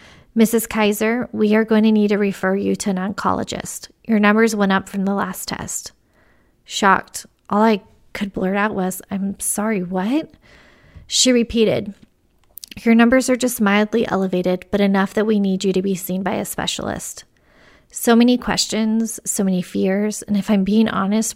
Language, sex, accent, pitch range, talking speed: English, female, American, 195-220 Hz, 175 wpm